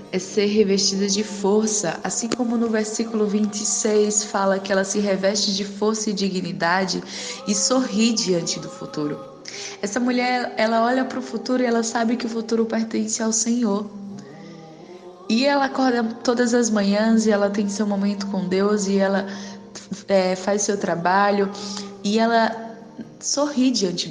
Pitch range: 190-230 Hz